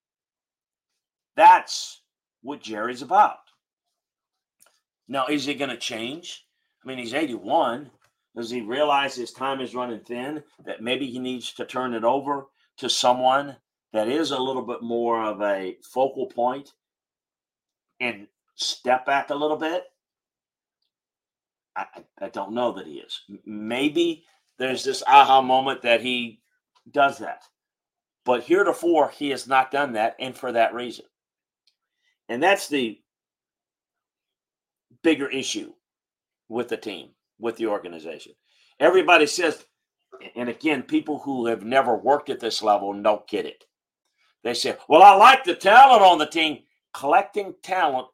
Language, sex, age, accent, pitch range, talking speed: English, male, 50-69, American, 120-160 Hz, 140 wpm